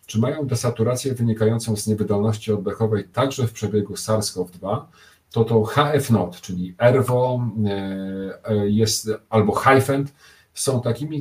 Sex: male